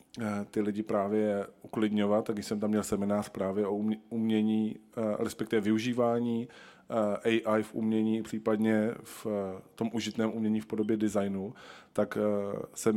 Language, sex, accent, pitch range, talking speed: Czech, male, native, 105-115 Hz, 130 wpm